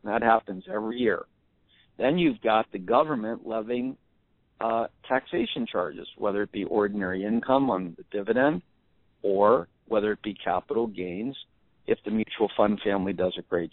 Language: English